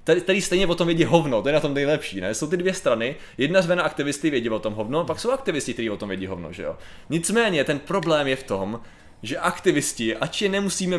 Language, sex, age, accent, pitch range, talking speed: Czech, male, 20-39, native, 125-170 Hz, 250 wpm